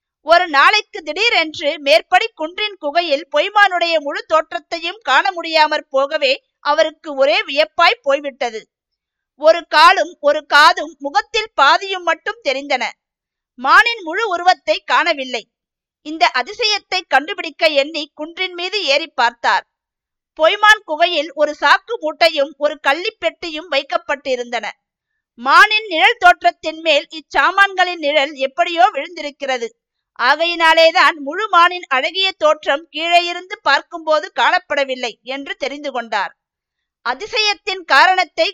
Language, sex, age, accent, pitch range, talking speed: Tamil, female, 50-69, native, 285-355 Hz, 105 wpm